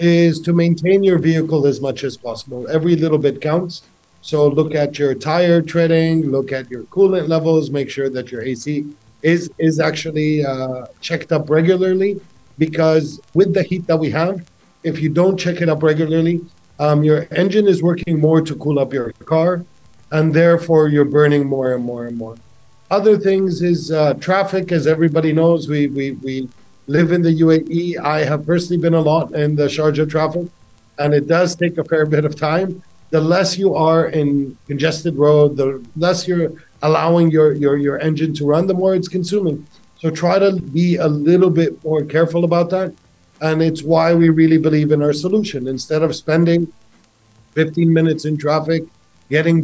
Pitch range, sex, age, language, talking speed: 150-170 Hz, male, 50-69, English, 185 wpm